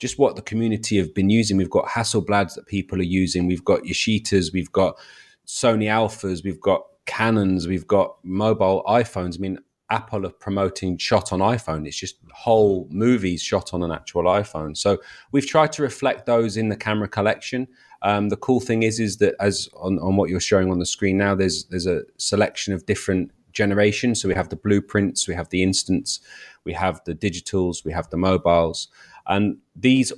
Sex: male